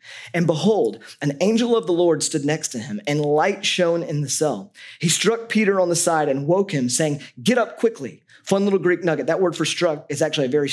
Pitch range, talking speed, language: 135-175 Hz, 235 wpm, English